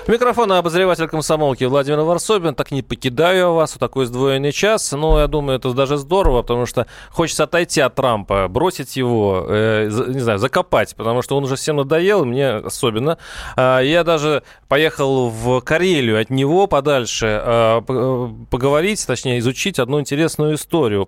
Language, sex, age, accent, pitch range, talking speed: Russian, male, 30-49, native, 115-150 Hz, 150 wpm